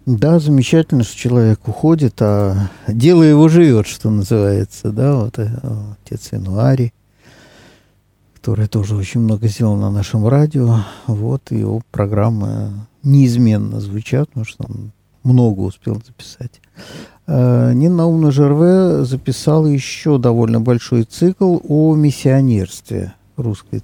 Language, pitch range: Russian, 110-140 Hz